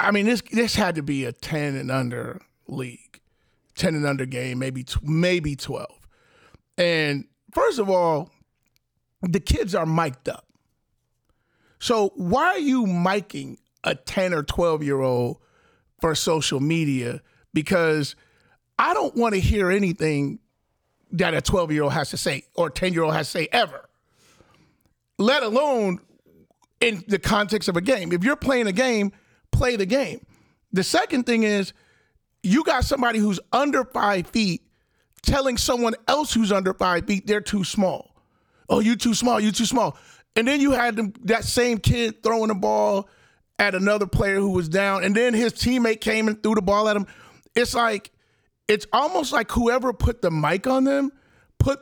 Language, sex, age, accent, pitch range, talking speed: English, male, 40-59, American, 155-225 Hz, 160 wpm